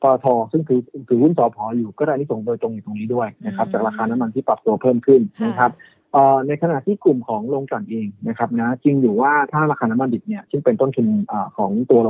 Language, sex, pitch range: Thai, male, 120-160 Hz